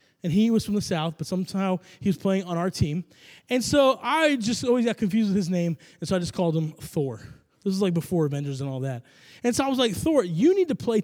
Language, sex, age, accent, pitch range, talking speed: English, male, 20-39, American, 140-200 Hz, 265 wpm